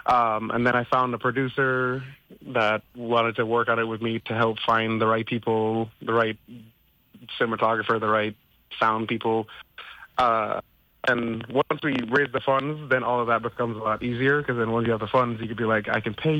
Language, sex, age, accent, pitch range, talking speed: English, male, 30-49, American, 110-130 Hz, 210 wpm